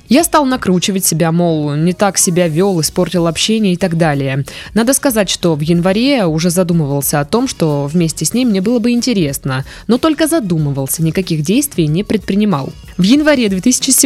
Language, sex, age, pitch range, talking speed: Russian, female, 20-39, 160-225 Hz, 175 wpm